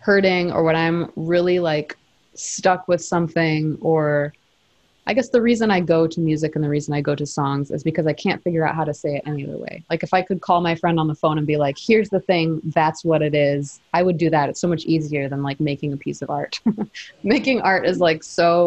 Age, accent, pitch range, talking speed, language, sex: 20-39, American, 150-175 Hz, 250 wpm, English, female